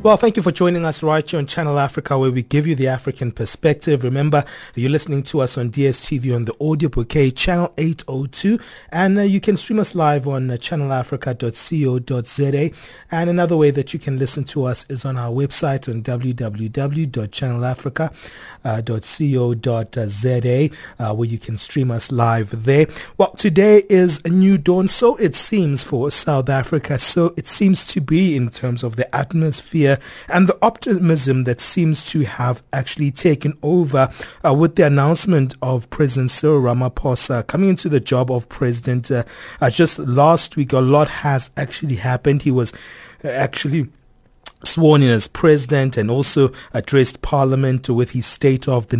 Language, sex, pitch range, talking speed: English, male, 125-155 Hz, 165 wpm